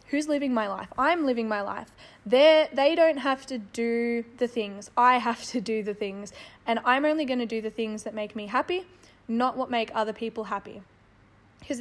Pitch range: 220-270 Hz